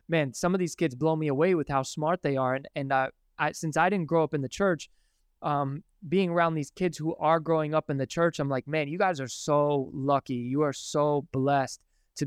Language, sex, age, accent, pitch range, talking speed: English, male, 20-39, American, 135-170 Hz, 245 wpm